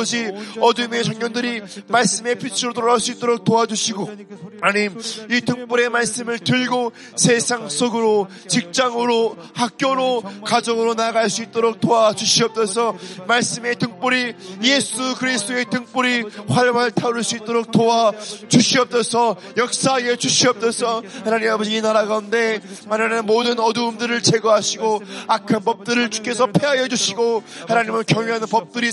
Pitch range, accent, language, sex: 215-240 Hz, native, Korean, male